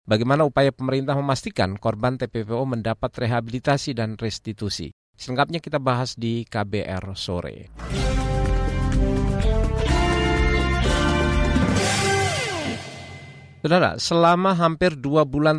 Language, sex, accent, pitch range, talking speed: Indonesian, male, native, 105-135 Hz, 80 wpm